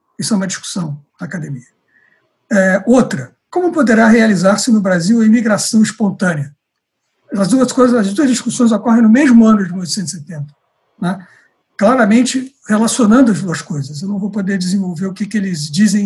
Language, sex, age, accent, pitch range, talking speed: Portuguese, male, 60-79, Brazilian, 180-235 Hz, 165 wpm